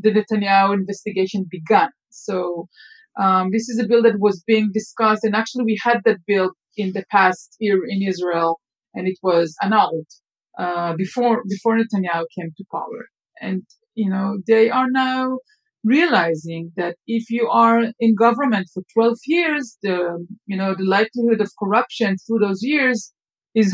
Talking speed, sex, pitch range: 160 wpm, female, 190-230 Hz